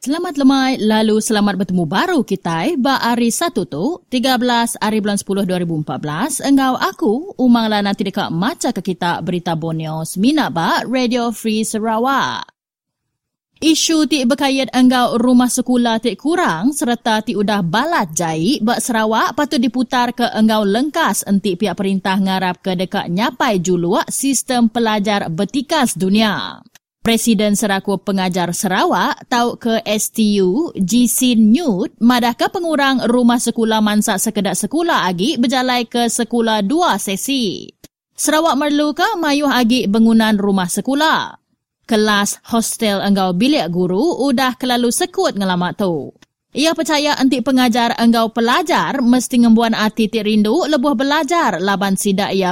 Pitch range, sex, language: 200-270 Hz, female, English